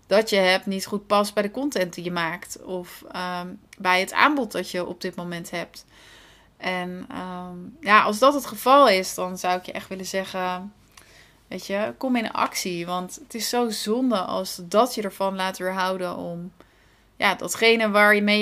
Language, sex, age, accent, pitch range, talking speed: Dutch, female, 30-49, Dutch, 185-225 Hz, 185 wpm